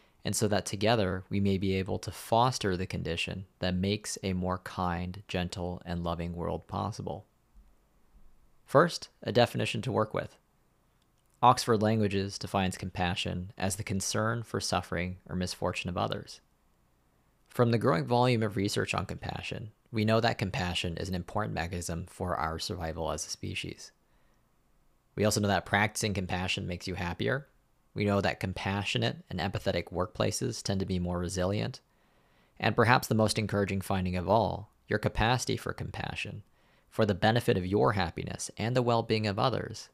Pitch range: 90-110 Hz